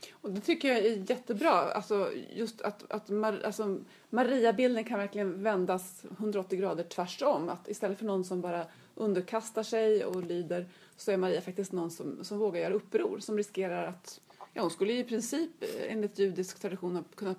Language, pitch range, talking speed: Swedish, 185-225 Hz, 185 wpm